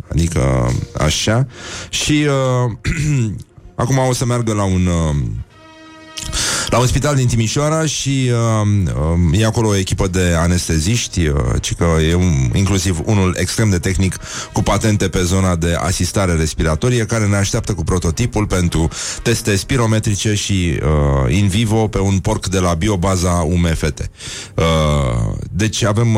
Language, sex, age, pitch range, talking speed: Romanian, male, 30-49, 85-110 Hz, 145 wpm